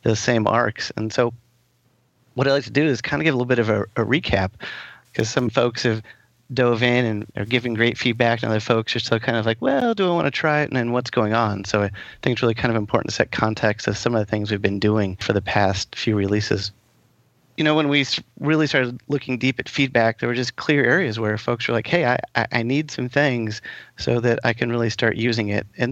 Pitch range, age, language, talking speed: 110-125 Hz, 30-49, English, 255 wpm